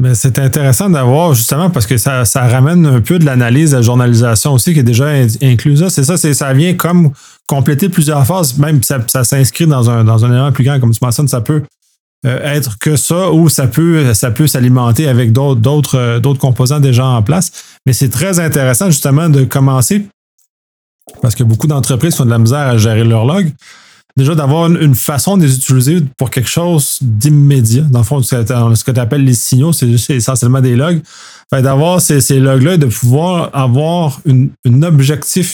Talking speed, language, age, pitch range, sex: 205 wpm, French, 30-49, 125-150 Hz, male